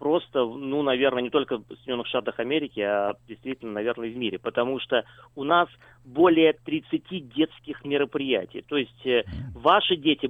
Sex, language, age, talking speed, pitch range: male, Russian, 30-49, 165 wpm, 130-170 Hz